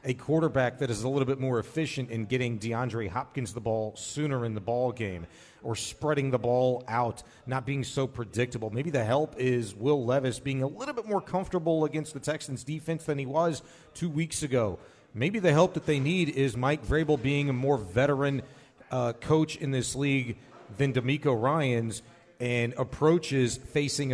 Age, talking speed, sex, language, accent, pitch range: 40-59, 185 wpm, male, English, American, 120-150 Hz